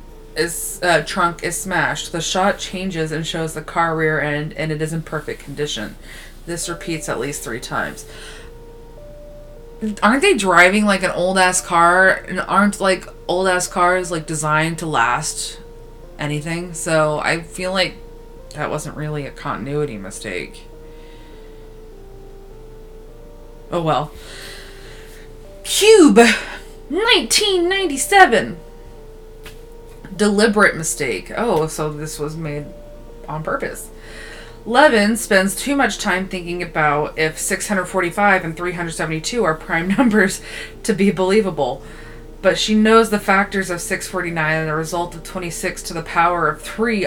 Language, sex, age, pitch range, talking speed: English, female, 20-39, 155-190 Hz, 130 wpm